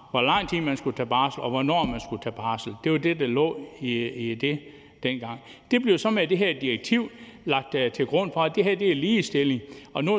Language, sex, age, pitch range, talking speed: Danish, male, 60-79, 130-185 Hz, 240 wpm